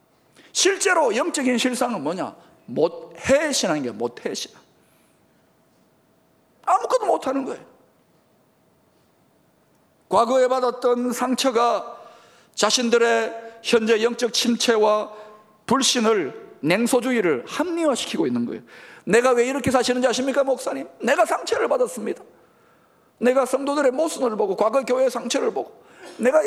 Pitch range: 240-320 Hz